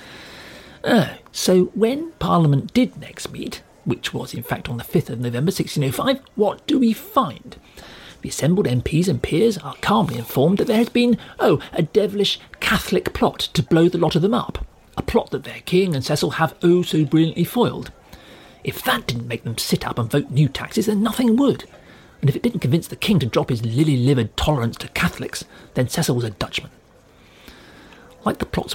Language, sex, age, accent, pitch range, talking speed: English, male, 40-59, British, 125-185 Hz, 195 wpm